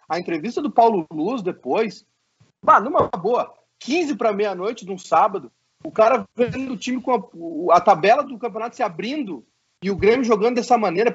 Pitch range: 205-260 Hz